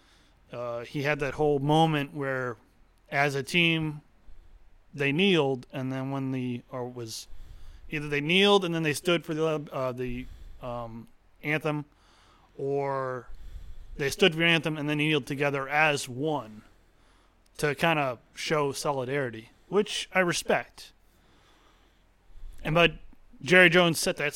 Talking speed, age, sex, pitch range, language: 140 wpm, 30-49, male, 105-155 Hz, English